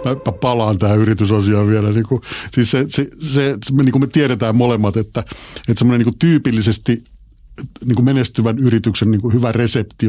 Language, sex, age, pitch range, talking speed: Finnish, male, 50-69, 105-130 Hz, 120 wpm